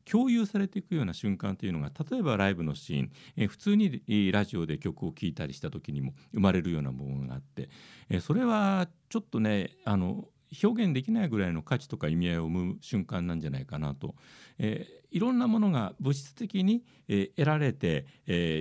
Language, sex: Japanese, male